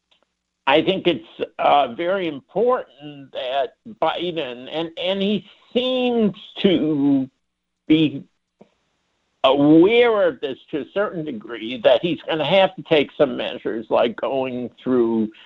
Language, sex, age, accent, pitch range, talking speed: English, male, 60-79, American, 130-210 Hz, 130 wpm